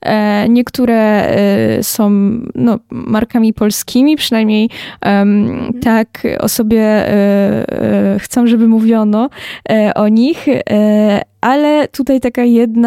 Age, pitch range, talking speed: 10-29, 215-245 Hz, 75 wpm